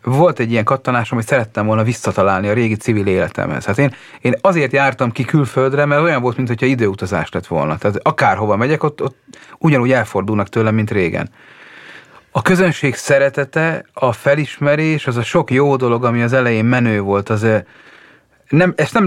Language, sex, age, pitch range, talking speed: Hungarian, male, 30-49, 105-140 Hz, 175 wpm